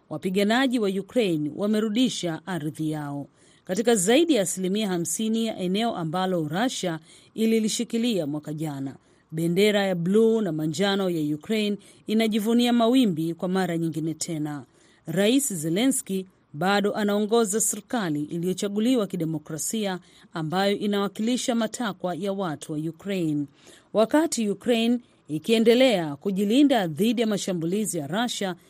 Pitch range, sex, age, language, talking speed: 165-220 Hz, female, 40-59, Swahili, 110 wpm